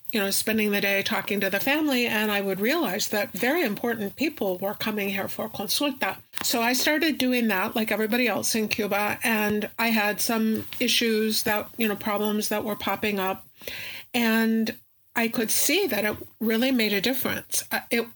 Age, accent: 50-69, American